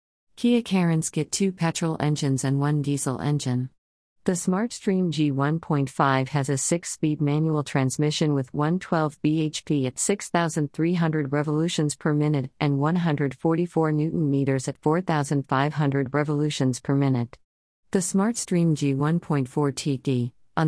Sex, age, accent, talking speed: female, 50-69, American, 120 wpm